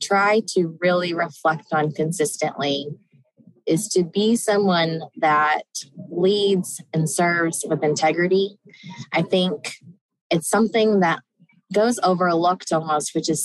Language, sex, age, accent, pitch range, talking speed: English, female, 20-39, American, 155-195 Hz, 115 wpm